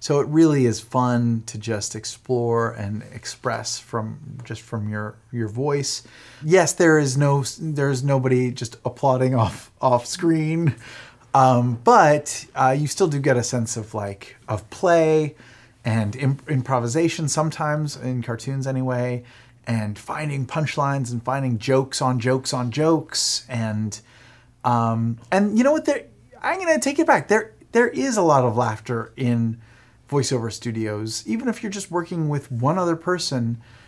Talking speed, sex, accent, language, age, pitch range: 160 wpm, male, American, English, 30-49, 120-155 Hz